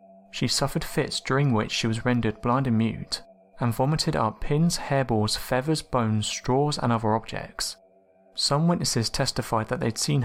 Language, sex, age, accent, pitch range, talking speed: English, male, 30-49, British, 115-150 Hz, 165 wpm